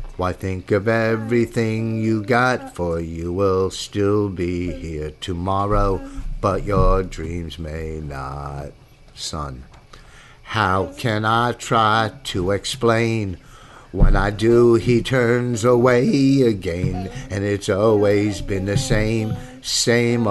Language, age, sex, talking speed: English, 50-69, male, 115 wpm